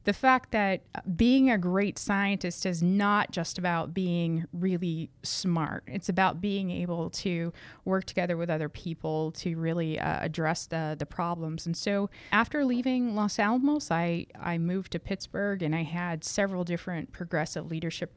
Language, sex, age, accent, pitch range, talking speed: English, female, 20-39, American, 170-200 Hz, 160 wpm